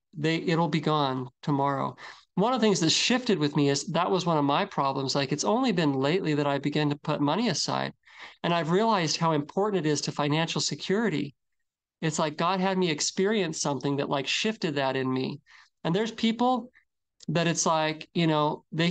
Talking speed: 205 wpm